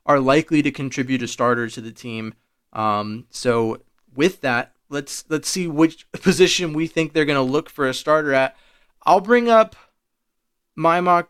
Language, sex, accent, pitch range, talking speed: English, male, American, 125-160 Hz, 175 wpm